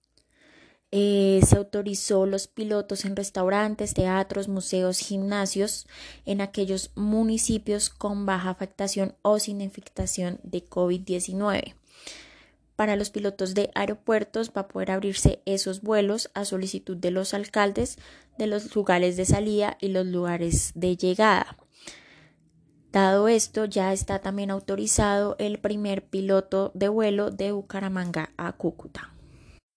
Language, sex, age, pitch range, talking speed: Spanish, female, 20-39, 195-215 Hz, 125 wpm